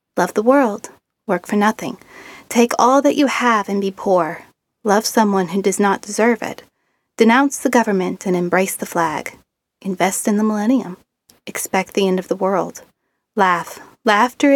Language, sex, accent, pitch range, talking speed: English, female, American, 195-245 Hz, 165 wpm